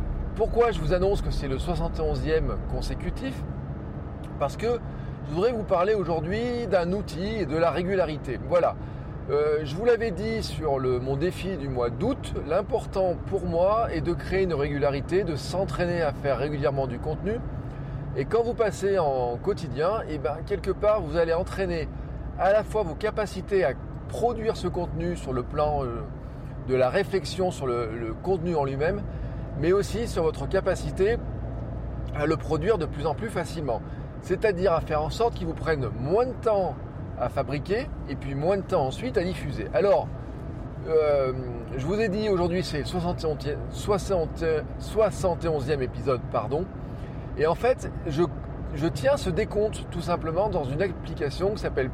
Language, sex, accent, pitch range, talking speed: French, male, French, 135-190 Hz, 165 wpm